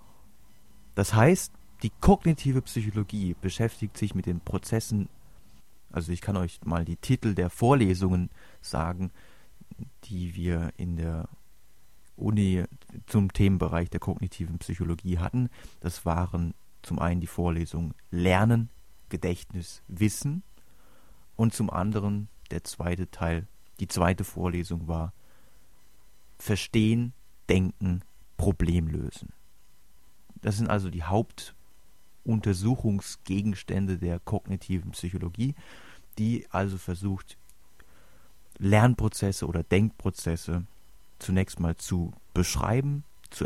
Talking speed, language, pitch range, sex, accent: 100 wpm, German, 85-105 Hz, male, German